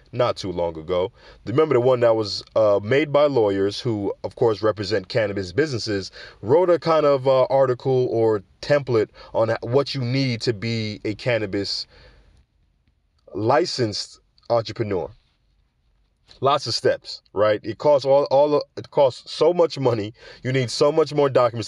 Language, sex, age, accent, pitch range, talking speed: English, male, 20-39, American, 110-145 Hz, 155 wpm